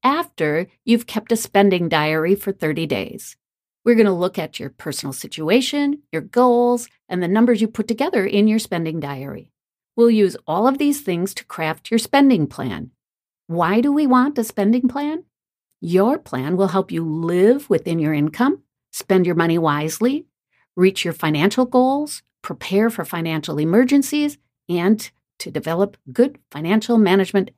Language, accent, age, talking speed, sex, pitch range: English, American, 50-69, 160 wpm, female, 165-240 Hz